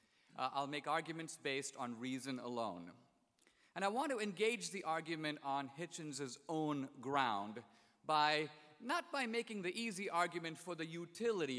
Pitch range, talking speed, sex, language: 140-210 Hz, 150 wpm, male, English